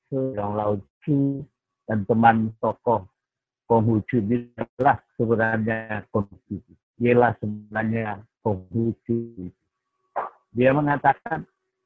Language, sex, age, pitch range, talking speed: Indonesian, male, 50-69, 120-170 Hz, 65 wpm